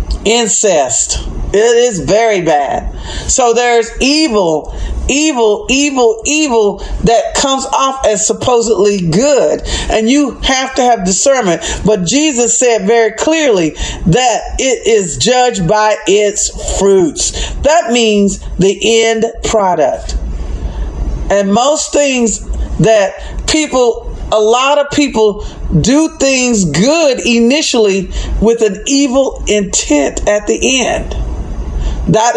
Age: 40-59